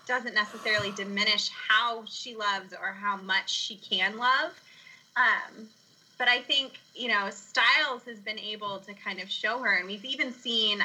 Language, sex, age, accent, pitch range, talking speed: English, female, 20-39, American, 205-255 Hz, 170 wpm